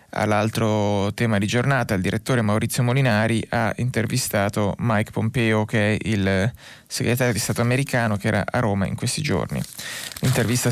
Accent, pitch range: native, 110-125 Hz